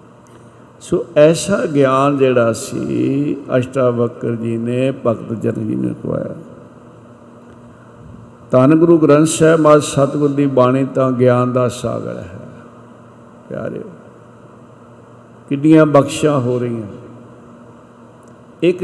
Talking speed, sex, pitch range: 95 wpm, male, 120-135 Hz